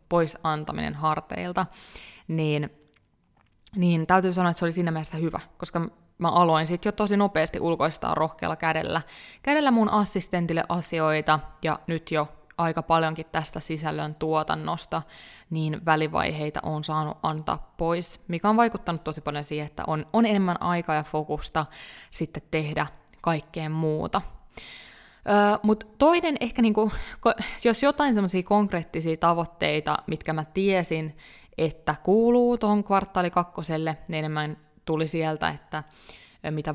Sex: female